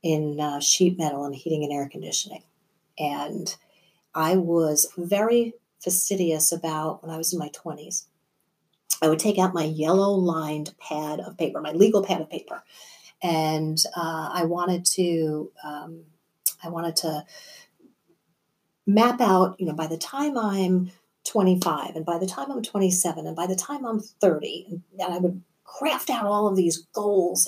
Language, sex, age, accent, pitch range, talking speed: English, female, 40-59, American, 165-205 Hz, 165 wpm